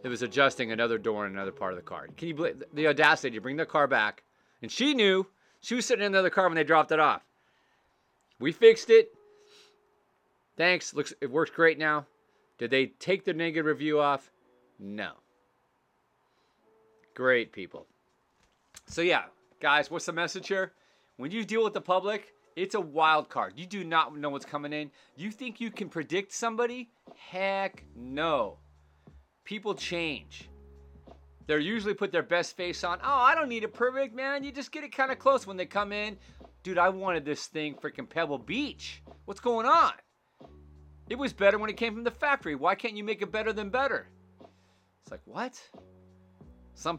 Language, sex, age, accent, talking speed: English, male, 30-49, American, 185 wpm